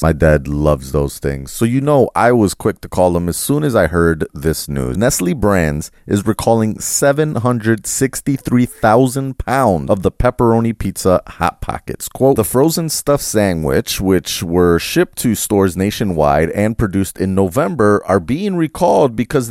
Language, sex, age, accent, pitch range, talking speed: English, male, 30-49, American, 85-125 Hz, 160 wpm